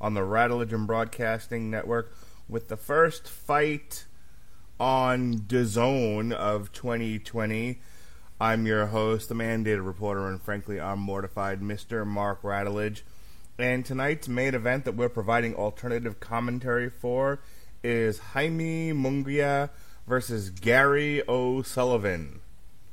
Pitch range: 105-125 Hz